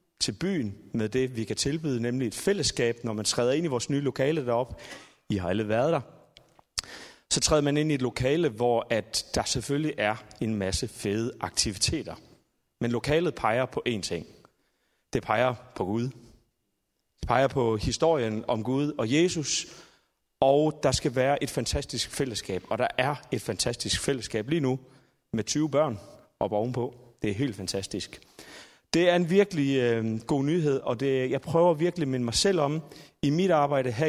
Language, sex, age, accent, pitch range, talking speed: Danish, male, 30-49, native, 120-150 Hz, 180 wpm